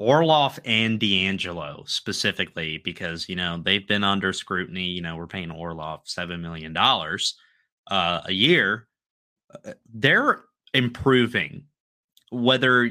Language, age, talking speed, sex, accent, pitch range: English, 20-39, 110 wpm, male, American, 100-130 Hz